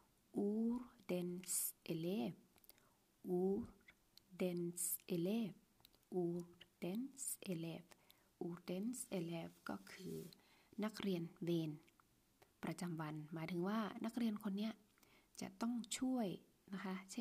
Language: Thai